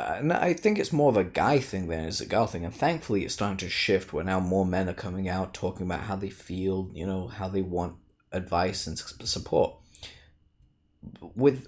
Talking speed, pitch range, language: 210 wpm, 85-100 Hz, English